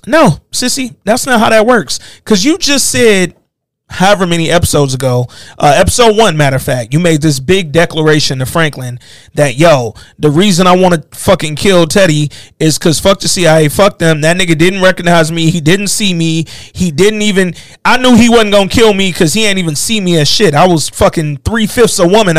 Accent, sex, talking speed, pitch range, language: American, male, 210 wpm, 160-225 Hz, English